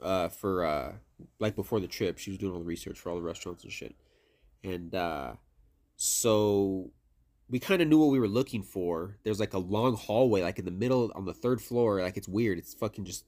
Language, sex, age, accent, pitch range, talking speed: English, male, 20-39, American, 95-120 Hz, 225 wpm